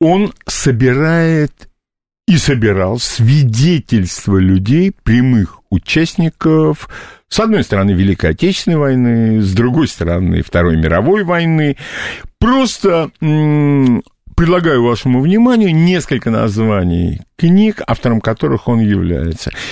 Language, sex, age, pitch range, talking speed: Russian, male, 50-69, 105-165 Hz, 95 wpm